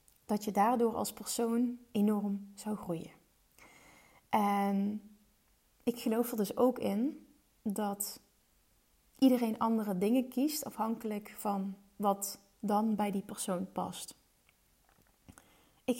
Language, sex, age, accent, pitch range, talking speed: Dutch, female, 30-49, Dutch, 200-235 Hz, 110 wpm